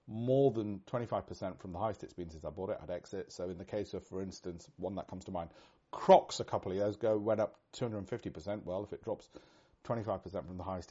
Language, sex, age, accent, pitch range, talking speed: English, male, 40-59, British, 90-110 Hz, 235 wpm